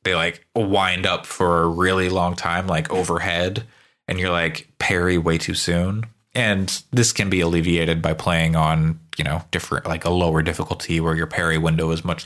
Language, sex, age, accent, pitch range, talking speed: English, male, 20-39, American, 80-100 Hz, 190 wpm